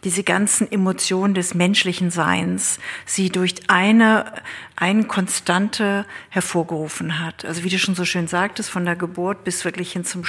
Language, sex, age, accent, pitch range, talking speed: German, female, 50-69, German, 175-200 Hz, 155 wpm